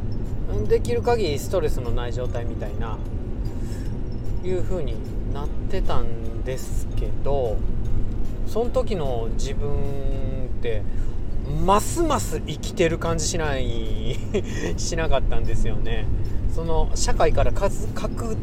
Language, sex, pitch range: Japanese, male, 105-125 Hz